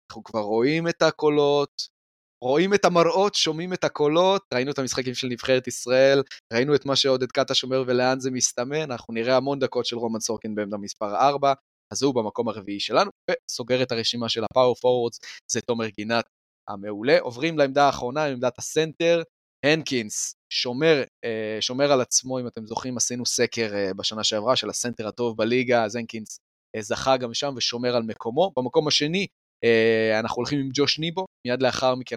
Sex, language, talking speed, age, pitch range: male, Hebrew, 145 wpm, 20-39, 115-140 Hz